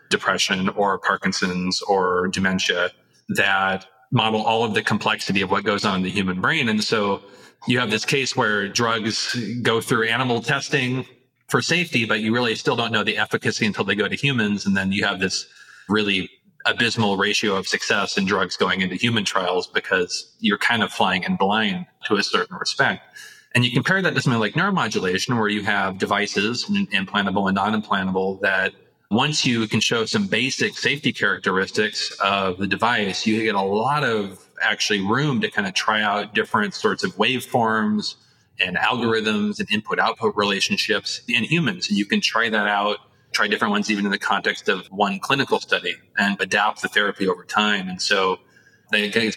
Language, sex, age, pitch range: English, male, 30-49, 100-125 Hz